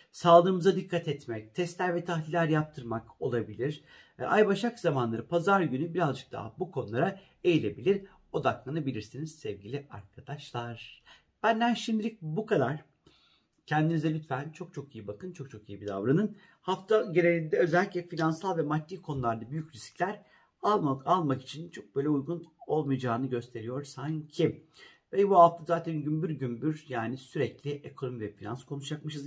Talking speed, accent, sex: 135 wpm, native, male